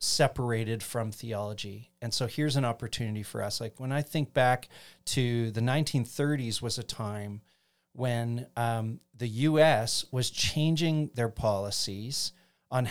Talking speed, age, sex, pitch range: 140 wpm, 40-59, male, 110-130 Hz